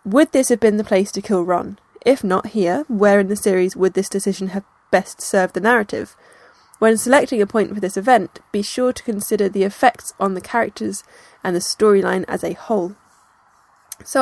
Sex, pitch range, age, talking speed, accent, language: female, 195-235 Hz, 10-29, 200 wpm, British, English